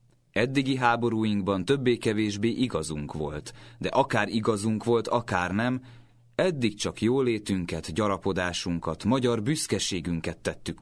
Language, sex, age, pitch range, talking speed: Hungarian, male, 30-49, 90-120 Hz, 100 wpm